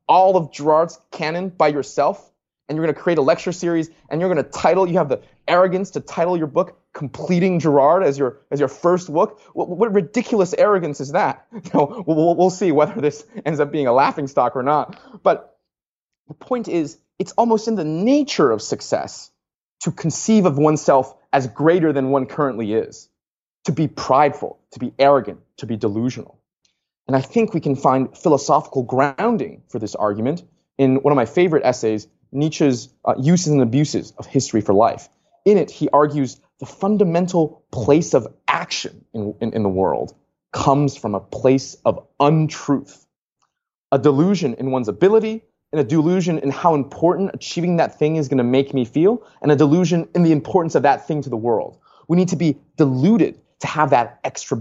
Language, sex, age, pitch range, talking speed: English, male, 30-49, 135-180 Hz, 190 wpm